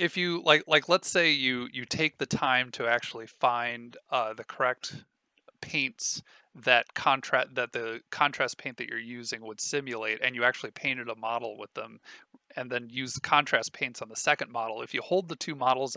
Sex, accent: male, American